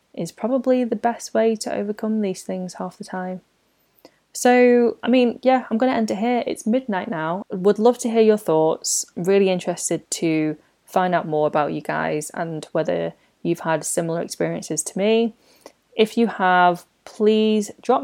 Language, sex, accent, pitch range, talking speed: English, female, British, 175-235 Hz, 175 wpm